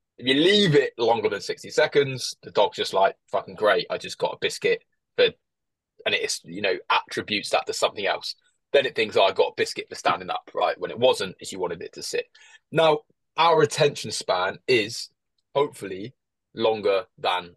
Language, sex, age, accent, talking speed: English, male, 20-39, British, 200 wpm